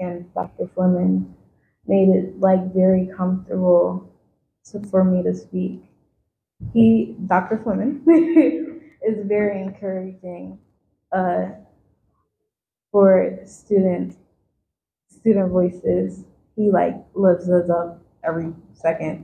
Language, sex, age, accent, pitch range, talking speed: English, female, 20-39, American, 175-210 Hz, 95 wpm